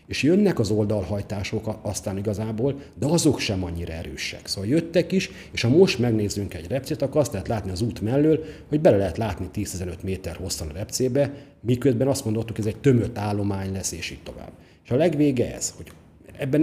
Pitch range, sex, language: 95-130 Hz, male, Hungarian